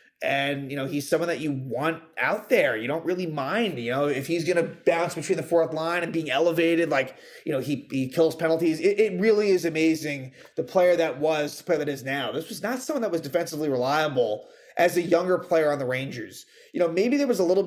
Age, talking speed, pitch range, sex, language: 30-49, 240 wpm, 160-205 Hz, male, English